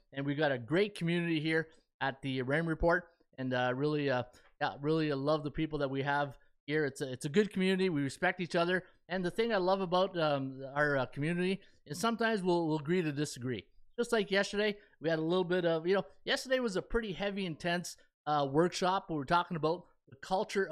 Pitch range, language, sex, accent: 140-185 Hz, English, male, American